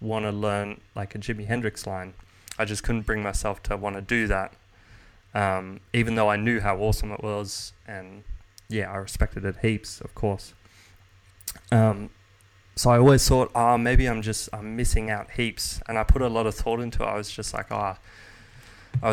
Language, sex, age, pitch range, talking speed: English, male, 20-39, 95-110 Hz, 200 wpm